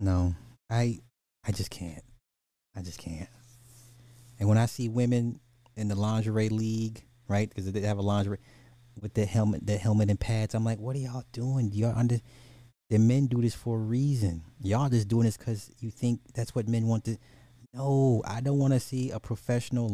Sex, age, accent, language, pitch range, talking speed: male, 30-49, American, English, 105-125 Hz, 195 wpm